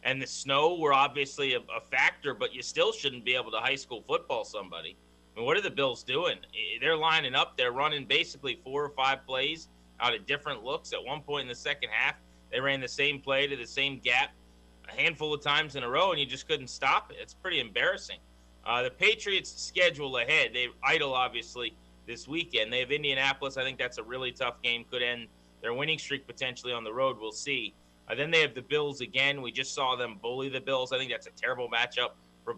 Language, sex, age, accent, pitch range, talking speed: English, male, 30-49, American, 120-150 Hz, 225 wpm